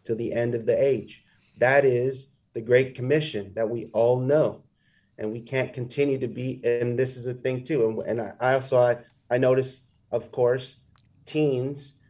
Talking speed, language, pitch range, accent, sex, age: 180 wpm, English, 130-160 Hz, American, male, 30-49